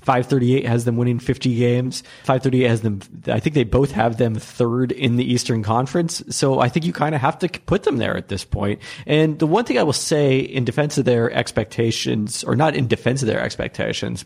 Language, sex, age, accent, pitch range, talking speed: English, male, 30-49, American, 110-140 Hz, 225 wpm